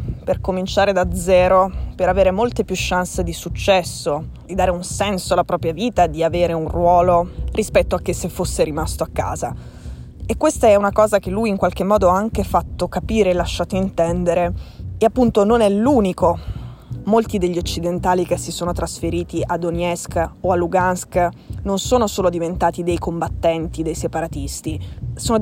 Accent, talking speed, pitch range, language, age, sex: native, 170 wpm, 170-200 Hz, Italian, 20-39, female